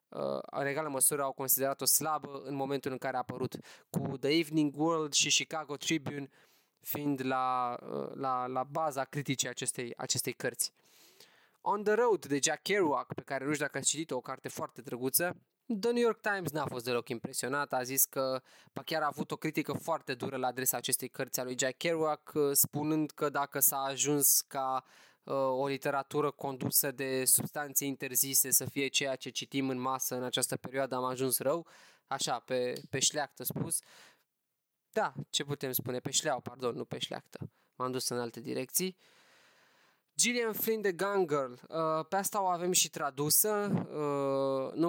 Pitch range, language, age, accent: 130-160 Hz, Romanian, 20-39, native